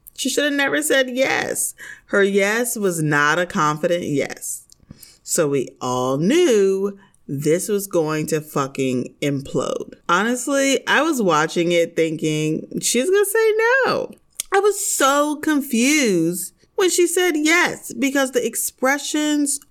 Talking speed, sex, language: 135 wpm, female, English